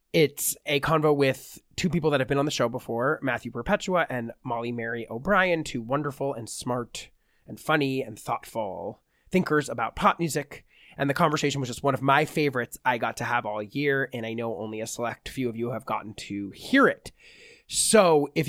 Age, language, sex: 20-39, English, male